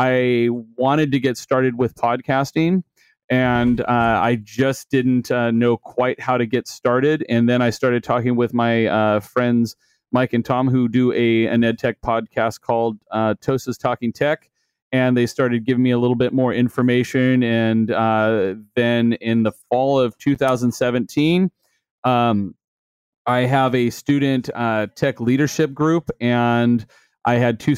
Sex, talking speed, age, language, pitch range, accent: male, 160 wpm, 30-49, English, 115-130 Hz, American